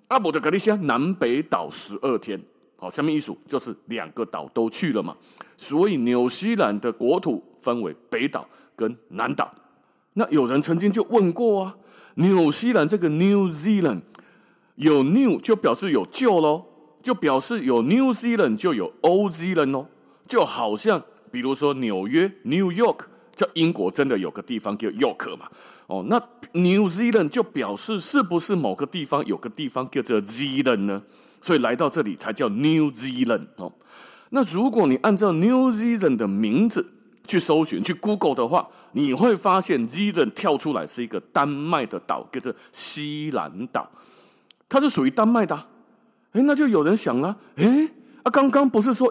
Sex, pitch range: male, 155-240 Hz